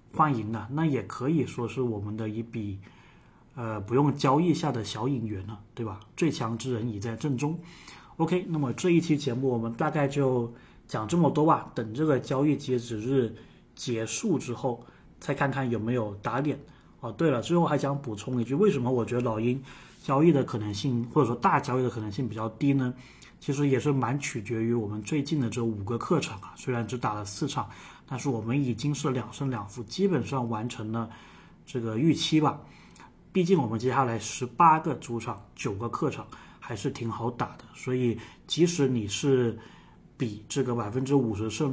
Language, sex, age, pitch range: Chinese, male, 20-39, 115-145 Hz